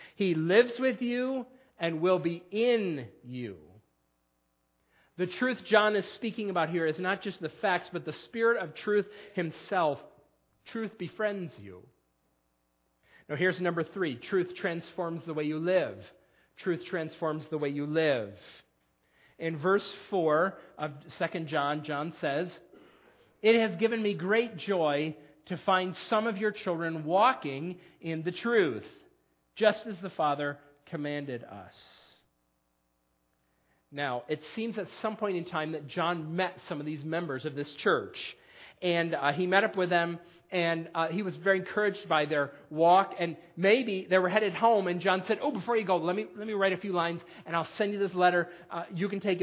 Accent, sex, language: American, male, English